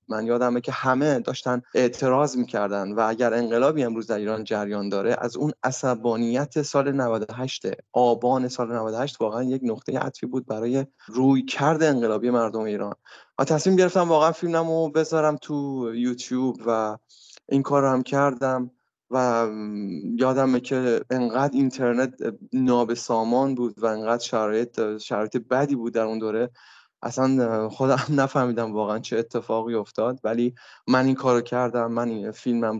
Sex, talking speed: male, 145 wpm